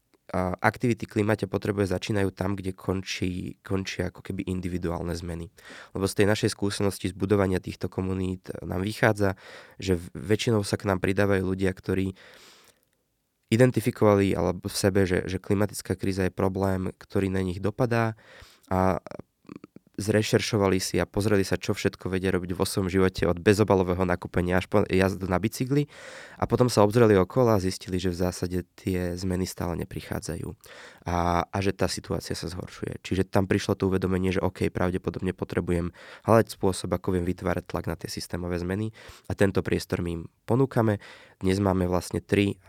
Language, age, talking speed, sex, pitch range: Slovak, 20-39, 160 wpm, male, 90-100 Hz